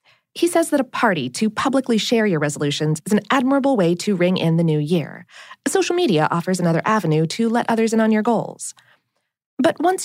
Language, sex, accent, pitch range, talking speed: English, female, American, 175-270 Hz, 205 wpm